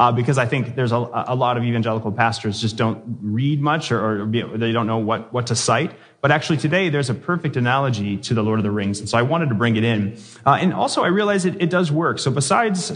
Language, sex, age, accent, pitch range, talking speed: English, male, 30-49, American, 110-150 Hz, 260 wpm